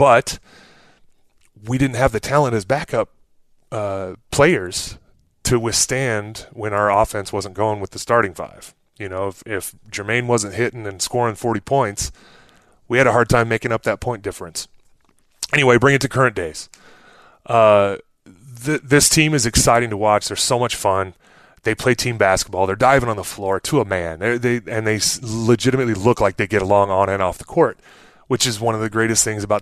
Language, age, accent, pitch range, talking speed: English, 30-49, American, 100-125 Hz, 190 wpm